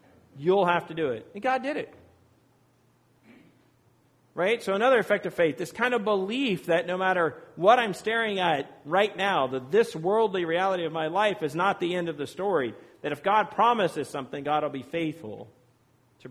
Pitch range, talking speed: 150-205 Hz, 190 wpm